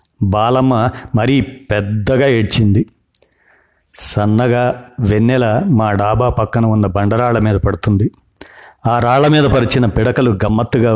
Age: 50-69